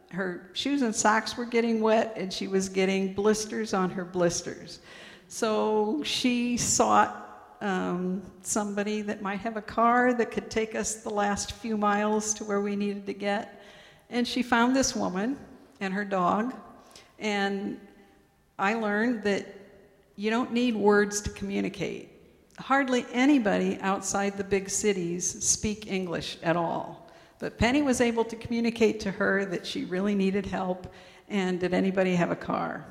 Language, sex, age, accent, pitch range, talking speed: English, female, 60-79, American, 185-225 Hz, 155 wpm